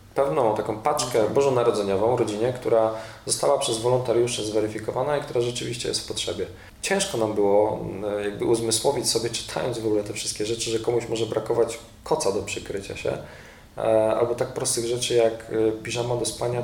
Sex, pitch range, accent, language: male, 110-120 Hz, native, Polish